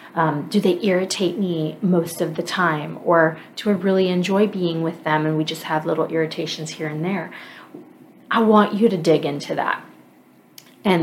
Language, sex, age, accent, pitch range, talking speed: English, female, 30-49, American, 160-185 Hz, 185 wpm